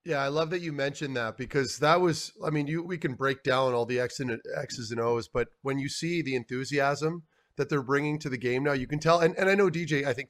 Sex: male